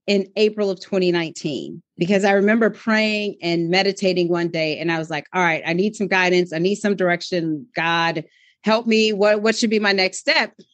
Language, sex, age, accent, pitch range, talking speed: English, female, 30-49, American, 180-240 Hz, 200 wpm